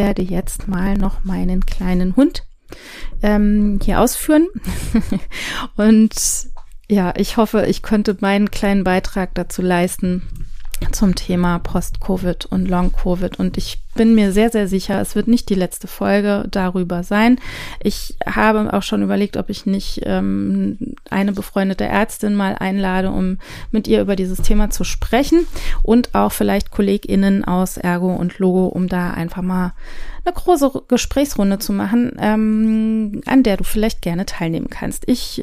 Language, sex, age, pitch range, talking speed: German, female, 30-49, 180-215 Hz, 150 wpm